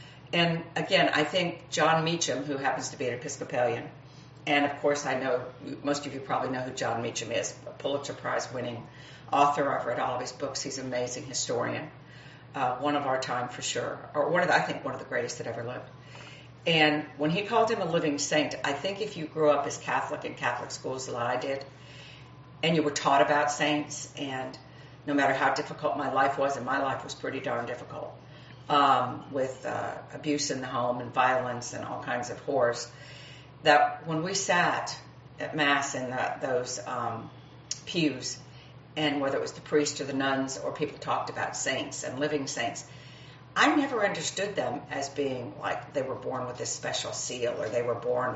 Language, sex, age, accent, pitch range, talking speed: English, female, 50-69, American, 130-150 Hz, 200 wpm